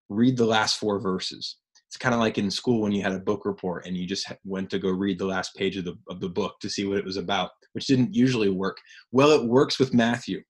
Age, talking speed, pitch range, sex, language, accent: 20-39, 270 wpm, 105-145 Hz, male, English, American